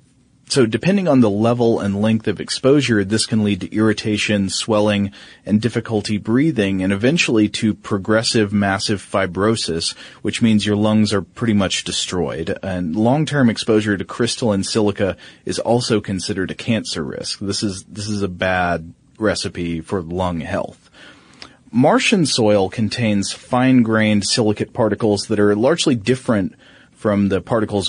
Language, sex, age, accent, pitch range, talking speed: English, male, 30-49, American, 100-115 Hz, 145 wpm